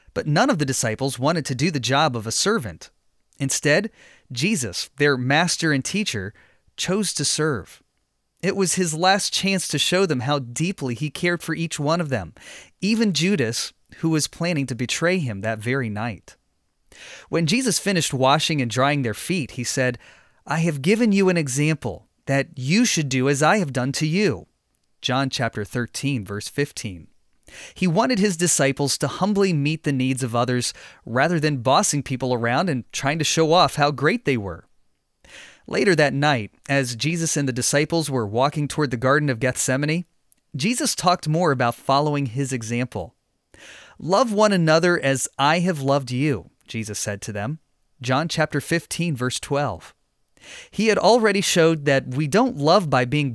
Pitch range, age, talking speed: 130-170 Hz, 30-49, 175 wpm